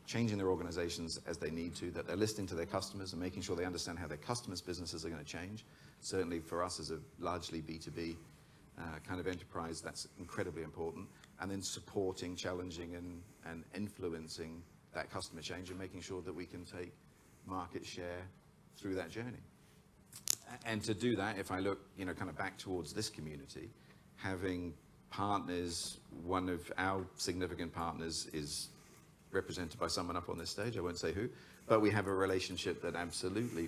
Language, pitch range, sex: English, 85-95 Hz, male